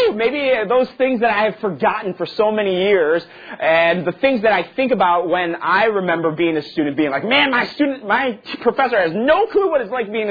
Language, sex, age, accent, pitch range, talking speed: English, male, 30-49, American, 165-235 Hz, 220 wpm